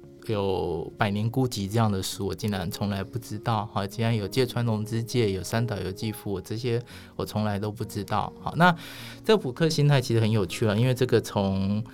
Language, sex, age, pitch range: Chinese, male, 20-39, 100-130 Hz